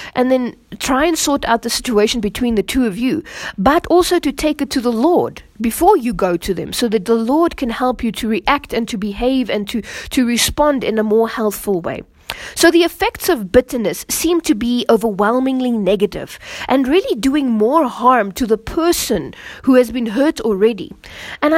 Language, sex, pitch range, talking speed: English, female, 210-280 Hz, 195 wpm